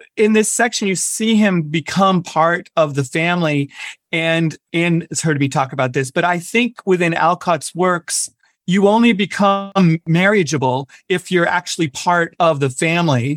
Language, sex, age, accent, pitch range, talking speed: English, male, 40-59, American, 145-180 Hz, 160 wpm